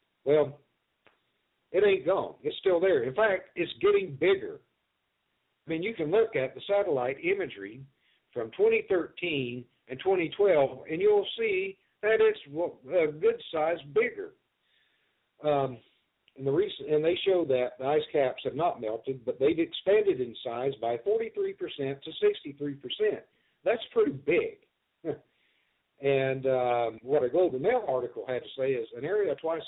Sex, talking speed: male, 160 wpm